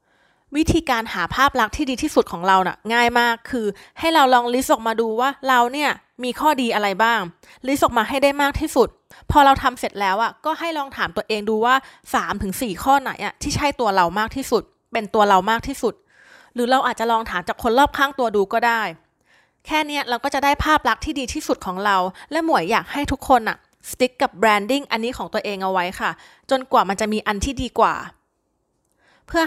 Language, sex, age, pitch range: Thai, female, 20-39, 215-275 Hz